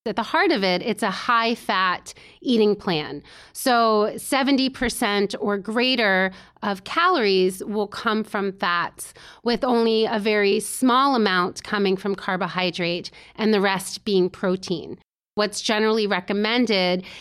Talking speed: 135 wpm